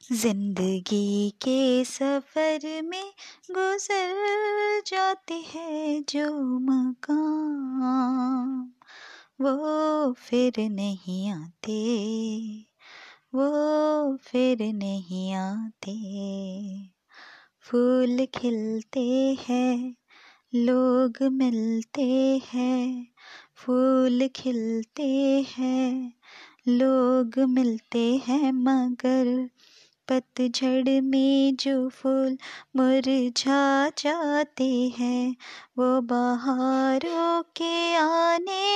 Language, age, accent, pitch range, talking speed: Hindi, 20-39, native, 245-305 Hz, 65 wpm